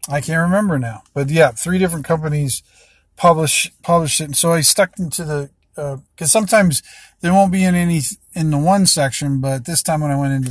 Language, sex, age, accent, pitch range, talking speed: English, male, 40-59, American, 125-155 Hz, 215 wpm